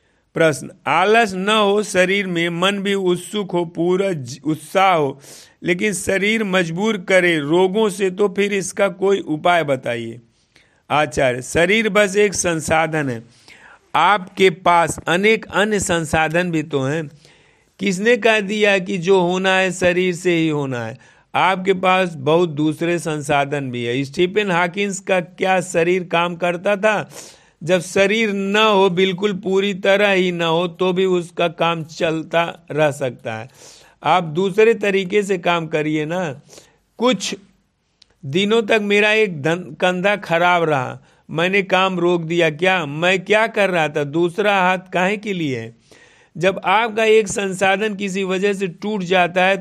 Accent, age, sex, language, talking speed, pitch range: native, 50-69, male, Hindi, 150 wpm, 160-195 Hz